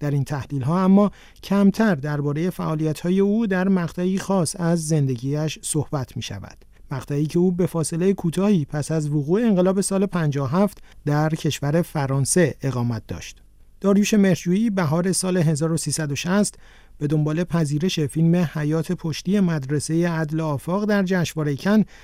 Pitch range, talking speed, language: 150-185 Hz, 140 wpm, Persian